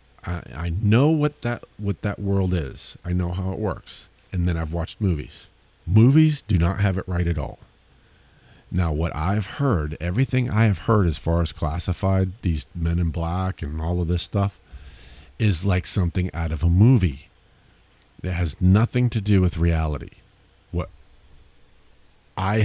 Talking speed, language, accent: 165 wpm, English, American